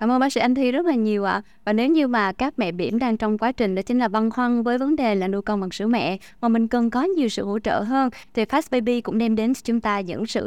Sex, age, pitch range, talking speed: female, 20-39, 205-260 Hz, 315 wpm